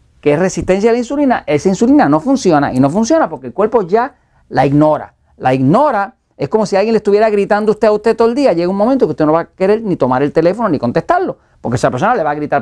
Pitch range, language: 145-220 Hz, Spanish